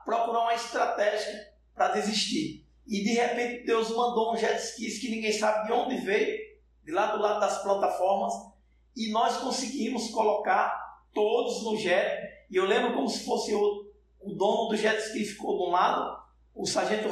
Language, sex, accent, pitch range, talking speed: Portuguese, male, Brazilian, 210-235 Hz, 175 wpm